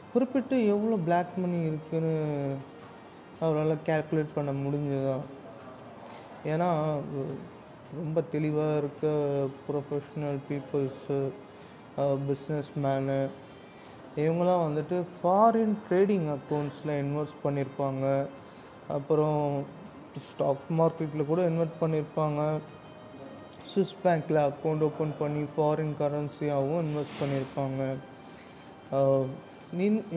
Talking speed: 80 wpm